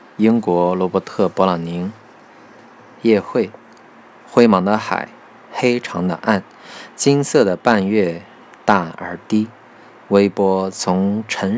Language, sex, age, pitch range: Chinese, male, 20-39, 90-115 Hz